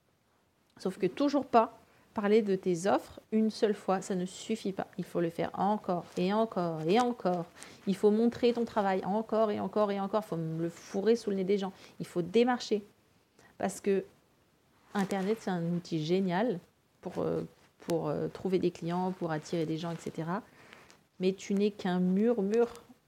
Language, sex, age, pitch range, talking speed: French, female, 40-59, 185-230 Hz, 175 wpm